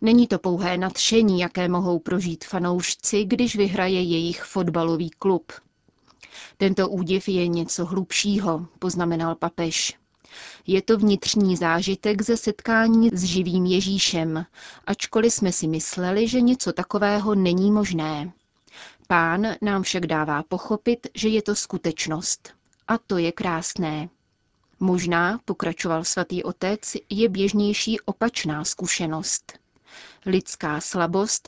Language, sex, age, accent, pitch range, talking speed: Czech, female, 30-49, native, 170-205 Hz, 115 wpm